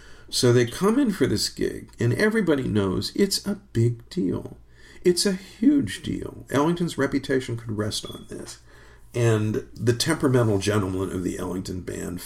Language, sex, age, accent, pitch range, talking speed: English, male, 50-69, American, 95-120 Hz, 155 wpm